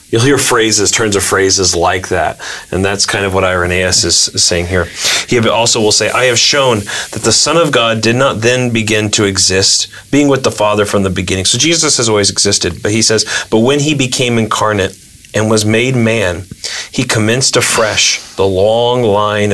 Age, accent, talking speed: 40-59, American, 200 wpm